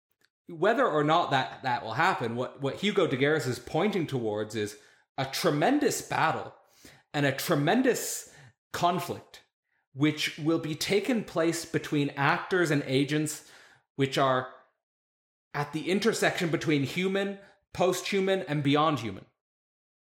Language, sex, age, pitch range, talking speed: English, male, 30-49, 125-165 Hz, 130 wpm